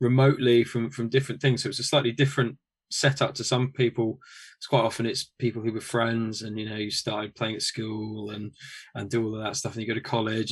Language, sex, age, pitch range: English, male, 10-29, 115-130 Hz